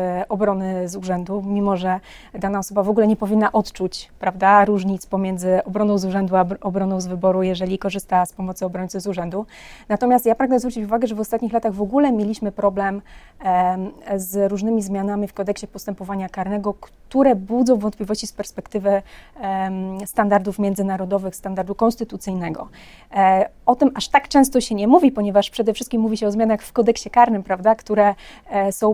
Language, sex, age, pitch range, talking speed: Polish, female, 30-49, 195-220 Hz, 160 wpm